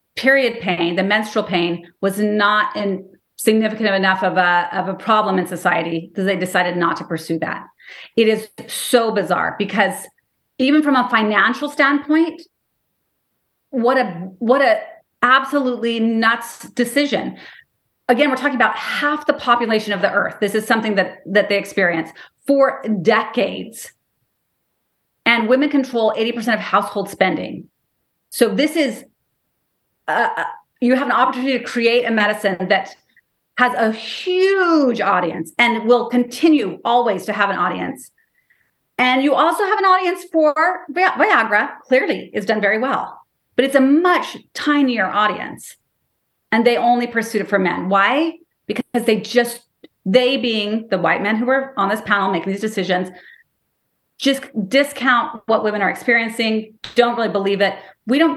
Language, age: English, 30-49